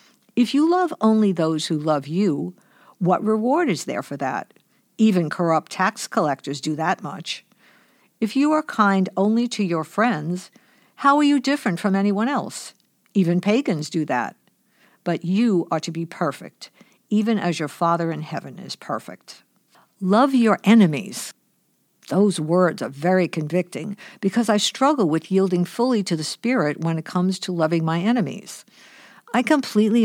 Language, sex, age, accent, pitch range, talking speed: English, female, 60-79, American, 165-220 Hz, 160 wpm